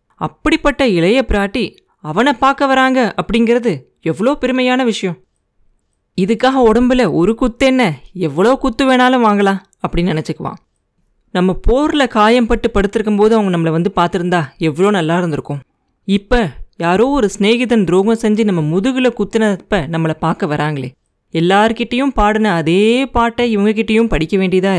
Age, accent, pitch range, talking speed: 30-49, native, 180-240 Hz, 125 wpm